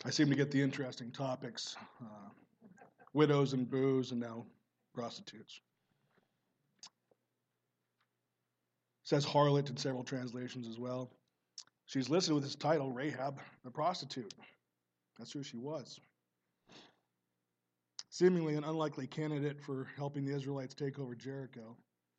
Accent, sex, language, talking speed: American, male, English, 120 wpm